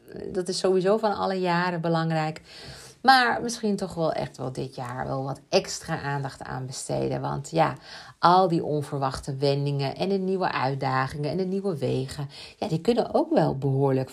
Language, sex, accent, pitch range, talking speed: Dutch, female, Dutch, 145-180 Hz, 175 wpm